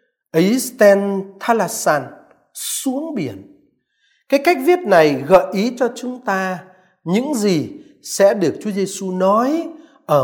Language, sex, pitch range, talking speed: Vietnamese, male, 185-270 Hz, 130 wpm